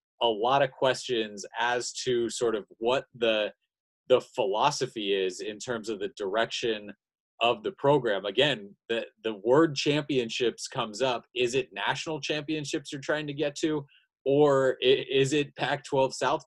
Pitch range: 105-150 Hz